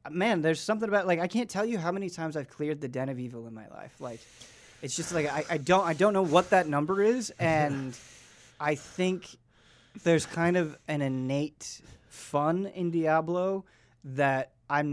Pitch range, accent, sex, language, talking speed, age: 125-165 Hz, American, male, English, 195 wpm, 30-49